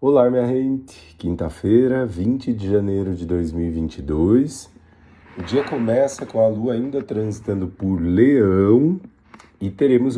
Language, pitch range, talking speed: Portuguese, 90-115 Hz, 125 wpm